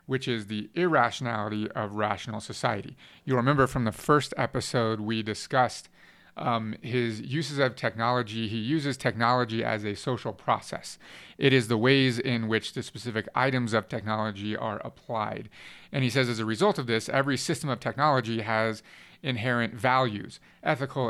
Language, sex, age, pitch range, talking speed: English, male, 30-49, 110-135 Hz, 160 wpm